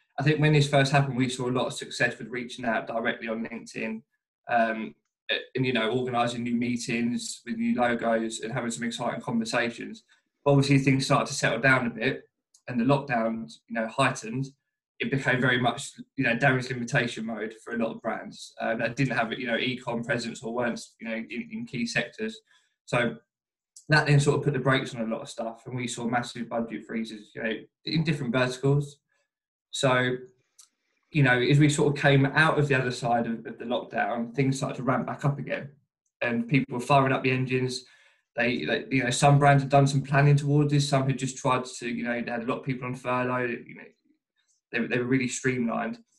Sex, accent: male, British